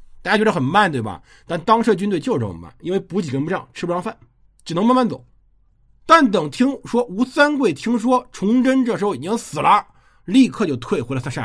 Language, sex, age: Chinese, male, 50-69